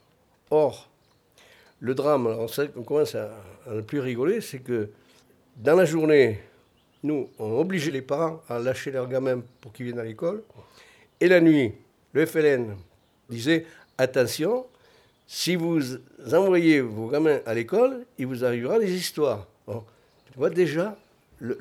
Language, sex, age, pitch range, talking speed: French, male, 60-79, 120-160 Hz, 150 wpm